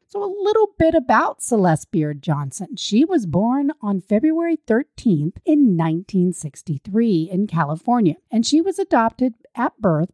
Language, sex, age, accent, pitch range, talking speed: English, female, 40-59, American, 170-260 Hz, 140 wpm